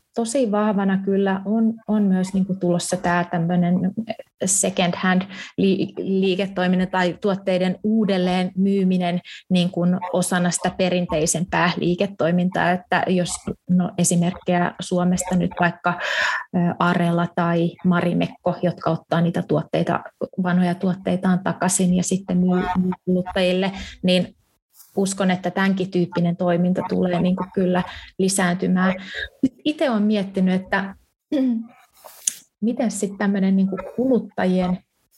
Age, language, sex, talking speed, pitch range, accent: 20-39, Finnish, female, 100 wpm, 180-195 Hz, native